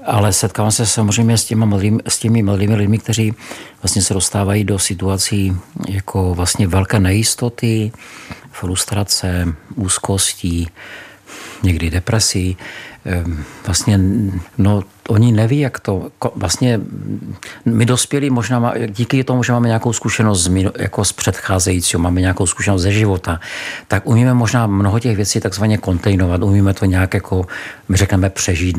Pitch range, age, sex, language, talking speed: 95-115 Hz, 50-69, male, Czech, 125 wpm